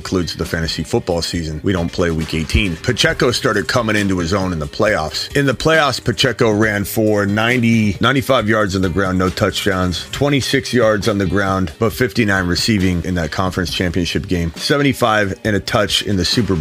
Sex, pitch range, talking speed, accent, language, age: male, 90-125 Hz, 190 wpm, American, English, 30-49